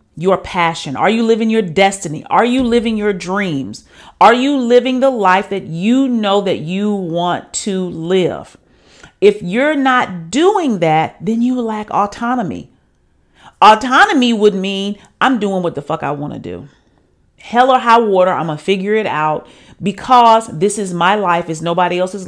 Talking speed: 170 wpm